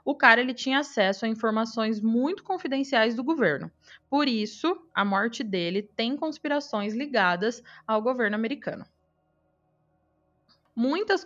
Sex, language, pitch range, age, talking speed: female, Portuguese, 215-275 Hz, 20-39, 115 wpm